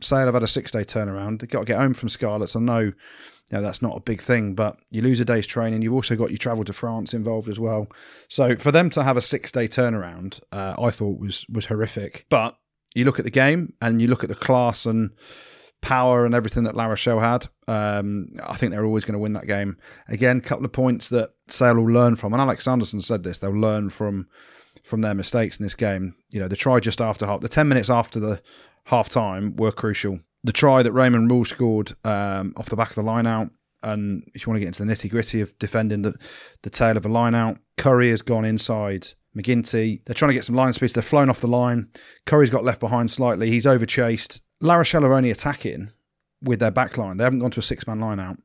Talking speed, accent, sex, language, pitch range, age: 240 wpm, British, male, English, 105-125 Hz, 30-49